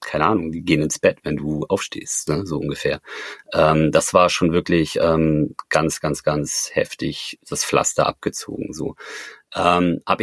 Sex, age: male, 30-49